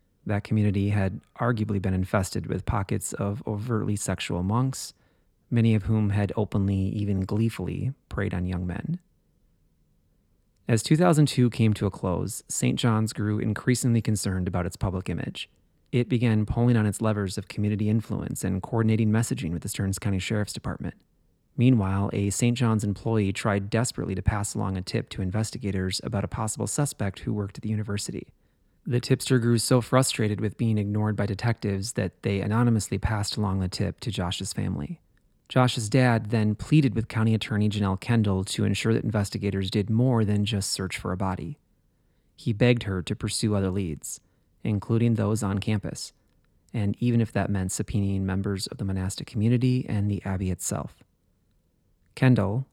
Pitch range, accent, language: 100-115 Hz, American, English